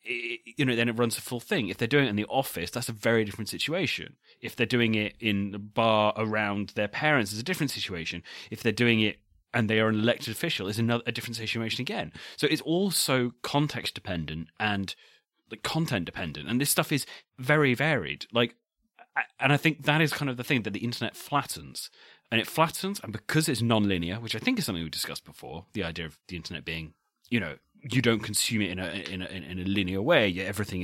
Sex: male